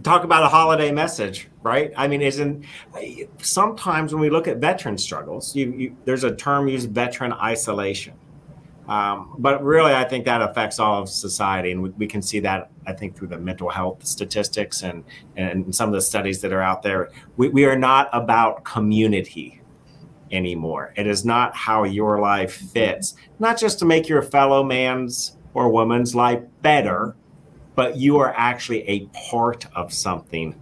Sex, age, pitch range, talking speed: male, 40-59, 100-140 Hz, 175 wpm